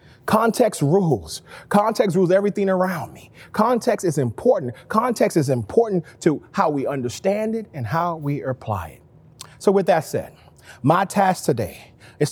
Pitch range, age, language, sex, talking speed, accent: 125-185 Hz, 30-49, English, male, 150 wpm, American